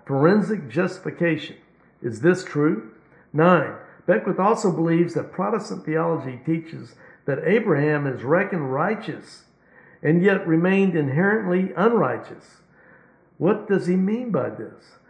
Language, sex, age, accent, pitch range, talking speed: English, male, 60-79, American, 155-185 Hz, 115 wpm